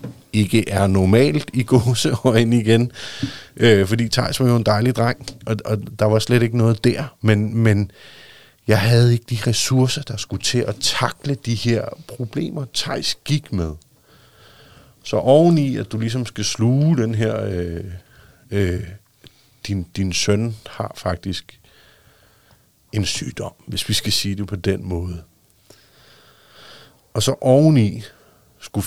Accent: native